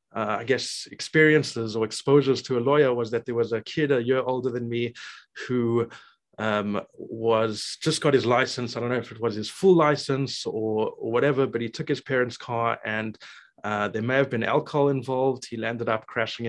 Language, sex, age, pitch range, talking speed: English, male, 20-39, 115-140 Hz, 205 wpm